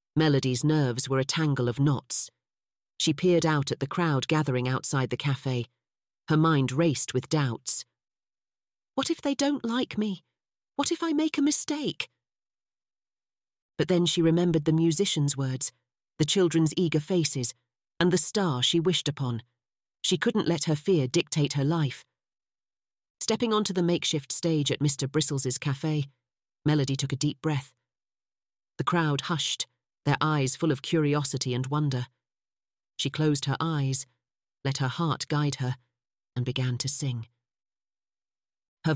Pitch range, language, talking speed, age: 135-175 Hz, English, 150 wpm, 40-59